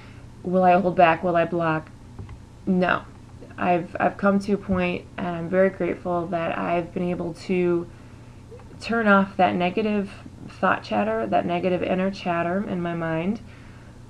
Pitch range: 120-180 Hz